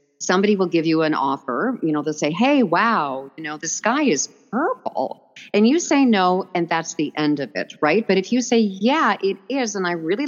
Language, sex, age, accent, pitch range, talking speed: English, female, 50-69, American, 145-195 Hz, 230 wpm